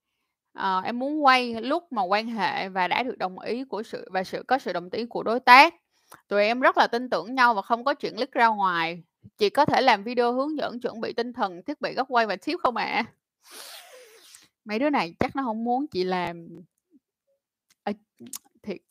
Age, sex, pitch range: 10-29, female, 205-265 Hz